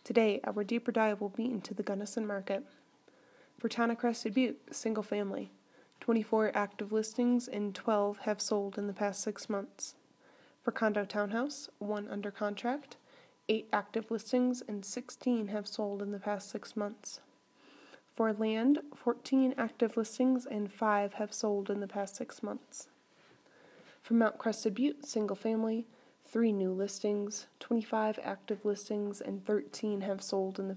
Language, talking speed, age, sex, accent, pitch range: English, 155 wpm, 20-39, female, American, 205-240 Hz